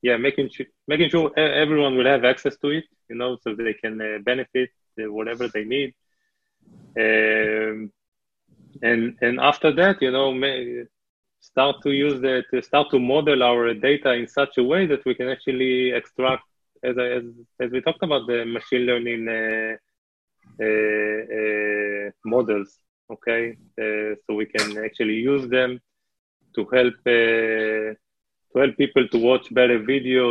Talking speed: 160 wpm